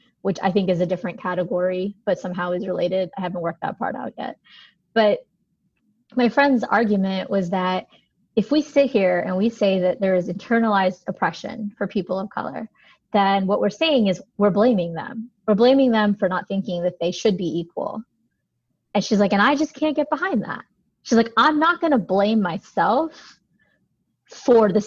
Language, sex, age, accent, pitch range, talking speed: English, female, 30-49, American, 185-225 Hz, 190 wpm